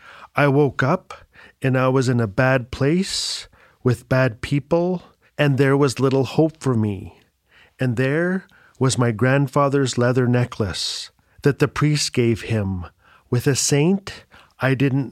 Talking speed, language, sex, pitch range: 145 wpm, English, male, 125-150 Hz